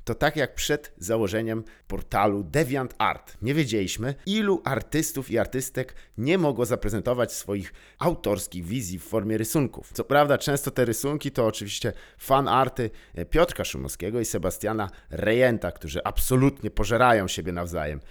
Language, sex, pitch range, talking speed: Polish, male, 90-135 Hz, 135 wpm